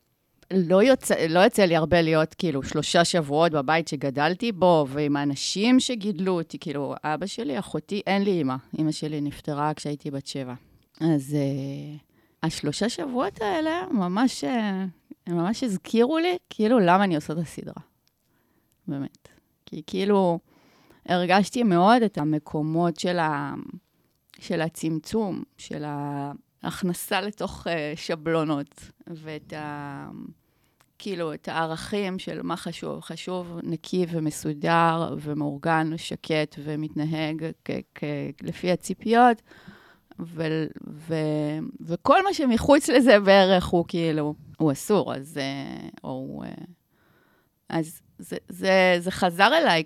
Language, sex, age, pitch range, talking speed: Hebrew, female, 30-49, 155-195 Hz, 125 wpm